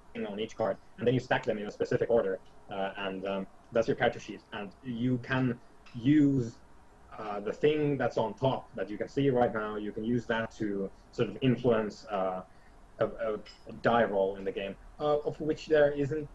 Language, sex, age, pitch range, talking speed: English, male, 20-39, 100-130 Hz, 205 wpm